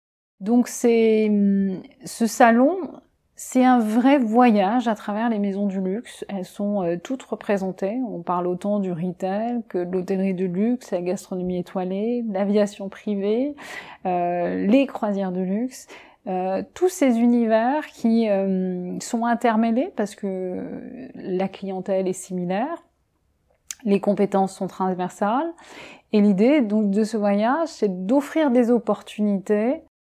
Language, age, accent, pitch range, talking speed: French, 30-49, French, 185-235 Hz, 130 wpm